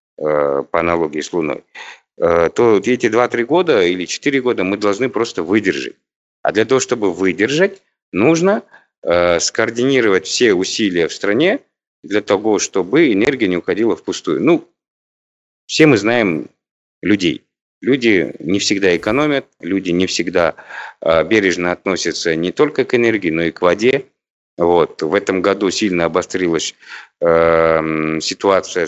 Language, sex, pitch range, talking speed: Russian, male, 80-120 Hz, 130 wpm